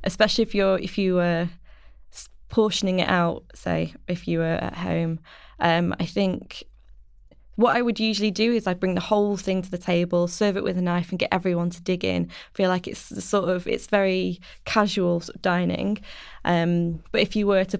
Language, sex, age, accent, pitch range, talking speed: English, female, 20-39, British, 180-210 Hz, 205 wpm